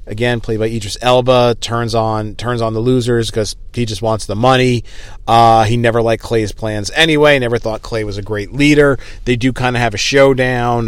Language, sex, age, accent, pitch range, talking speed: English, male, 40-59, American, 95-130 Hz, 210 wpm